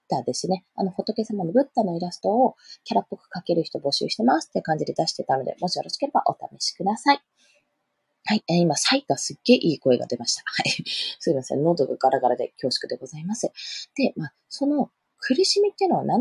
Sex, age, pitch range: female, 20-39, 165-250 Hz